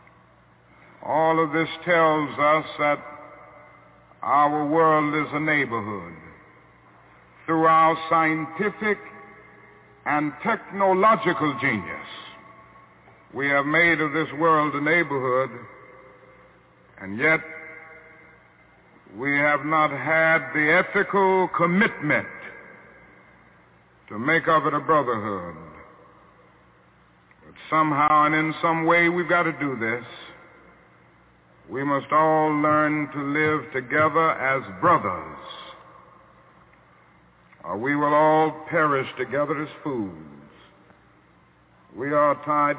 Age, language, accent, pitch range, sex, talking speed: 60-79, English, American, 140-175 Hz, male, 100 wpm